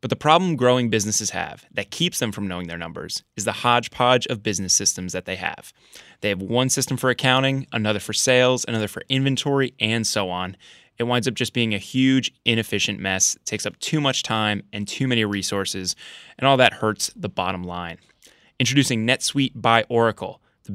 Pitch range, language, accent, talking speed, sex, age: 105-125 Hz, English, American, 195 wpm, male, 20-39